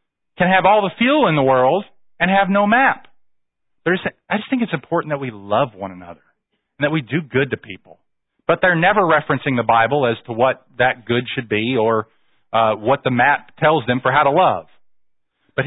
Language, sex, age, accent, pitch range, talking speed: English, male, 40-59, American, 120-160 Hz, 205 wpm